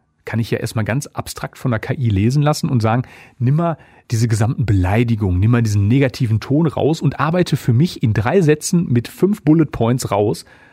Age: 40-59